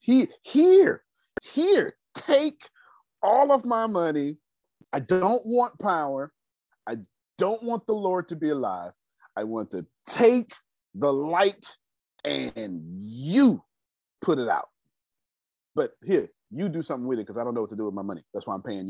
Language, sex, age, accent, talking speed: English, male, 40-59, American, 165 wpm